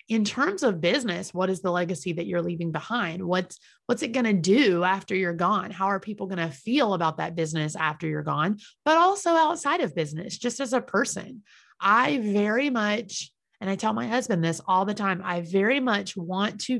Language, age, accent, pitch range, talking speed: English, 30-49, American, 180-235 Hz, 210 wpm